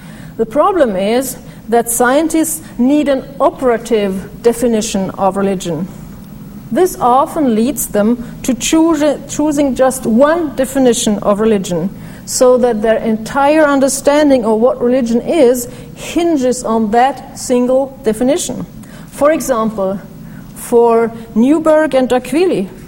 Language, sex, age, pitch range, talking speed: English, female, 40-59, 210-265 Hz, 110 wpm